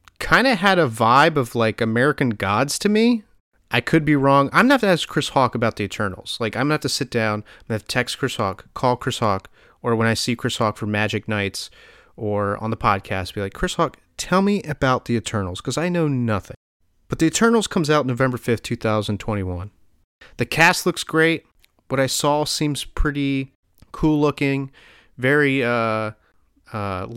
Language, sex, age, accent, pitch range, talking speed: English, male, 30-49, American, 110-145 Hz, 195 wpm